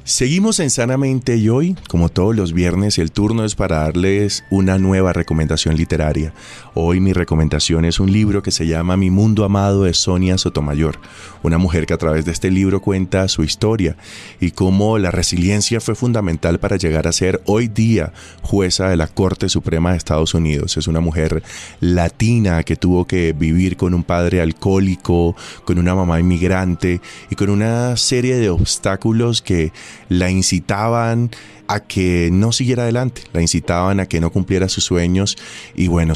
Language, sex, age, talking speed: Spanish, male, 30-49, 175 wpm